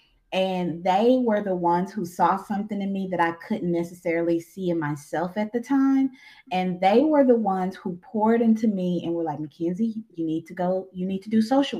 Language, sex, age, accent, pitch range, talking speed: English, female, 20-39, American, 170-235 Hz, 215 wpm